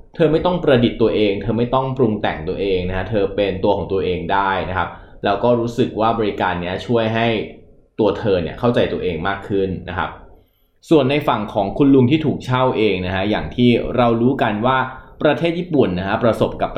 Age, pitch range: 20-39, 95-130 Hz